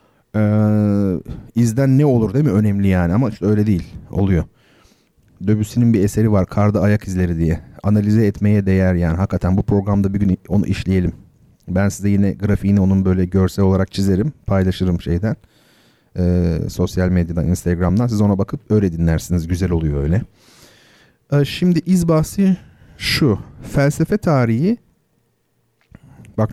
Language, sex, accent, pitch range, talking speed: Turkish, male, native, 95-130 Hz, 140 wpm